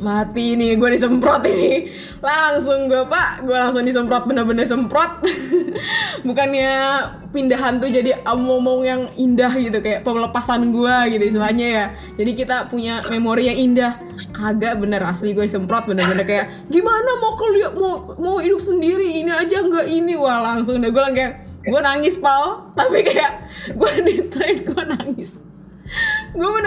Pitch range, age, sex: 240-340 Hz, 20-39, female